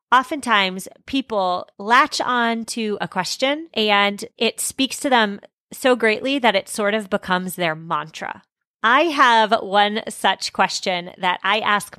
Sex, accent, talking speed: female, American, 145 wpm